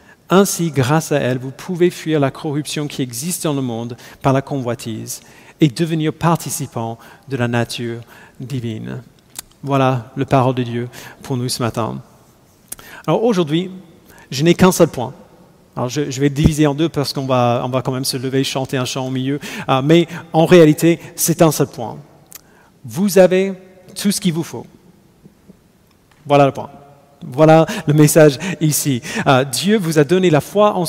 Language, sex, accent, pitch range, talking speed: French, male, French, 130-170 Hz, 180 wpm